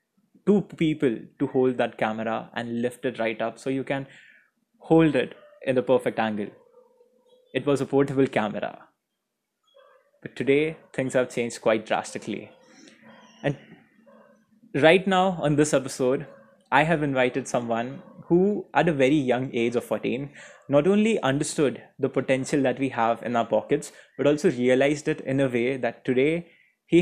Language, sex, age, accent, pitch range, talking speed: English, male, 20-39, Indian, 125-160 Hz, 160 wpm